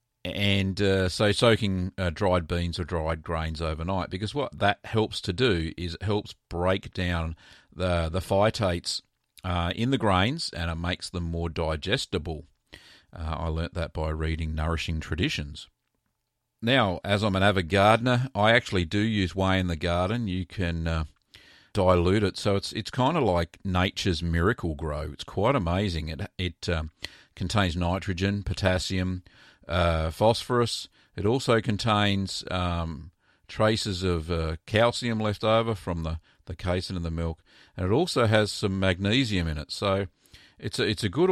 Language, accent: English, Australian